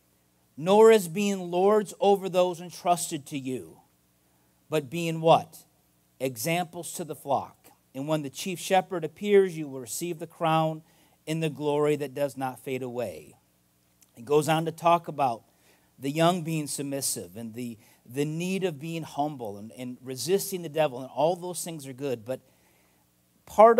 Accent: American